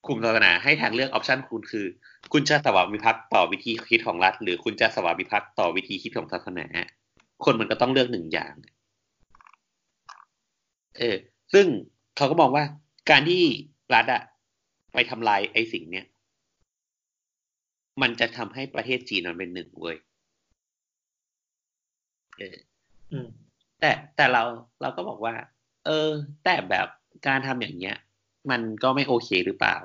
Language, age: Thai, 30-49